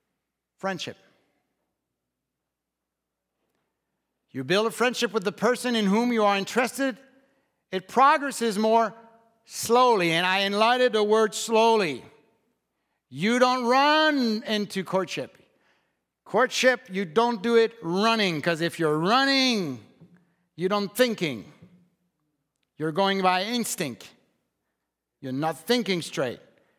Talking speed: 110 wpm